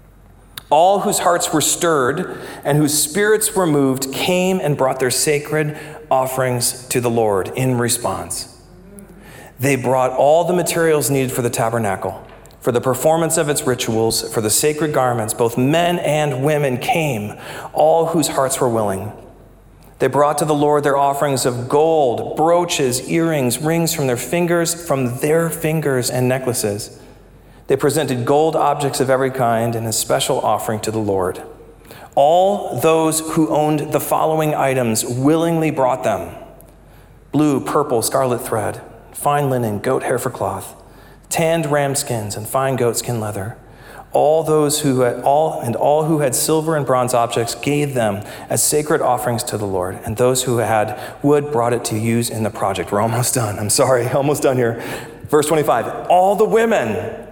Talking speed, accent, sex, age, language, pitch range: 165 wpm, American, male, 40-59, English, 120-155 Hz